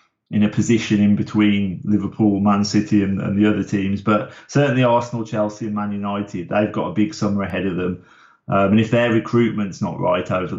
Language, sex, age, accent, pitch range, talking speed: English, male, 30-49, British, 100-115 Hz, 205 wpm